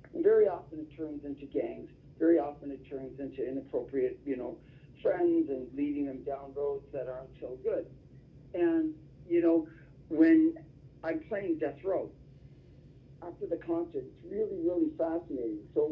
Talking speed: 150 wpm